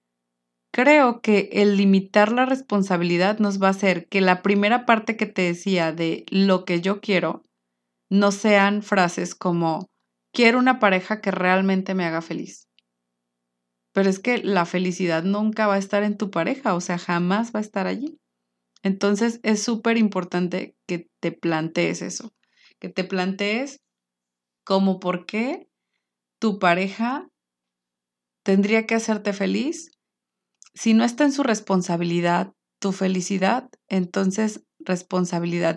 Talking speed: 140 wpm